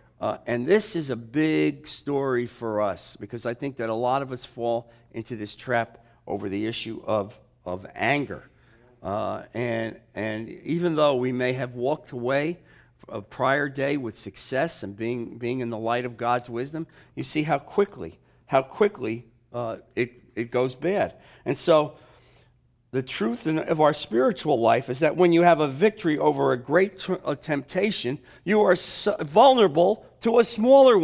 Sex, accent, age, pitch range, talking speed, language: male, American, 50-69, 120-165 Hz, 170 wpm, English